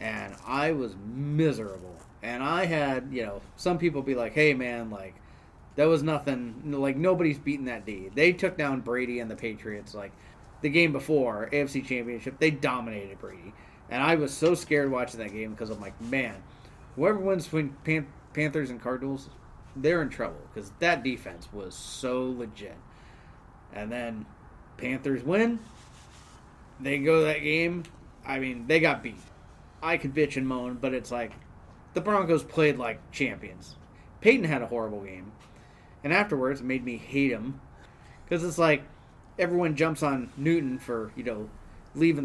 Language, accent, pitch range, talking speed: English, American, 115-155 Hz, 170 wpm